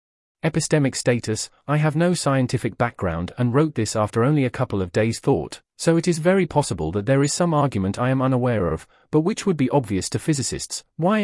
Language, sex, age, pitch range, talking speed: English, male, 40-59, 110-140 Hz, 210 wpm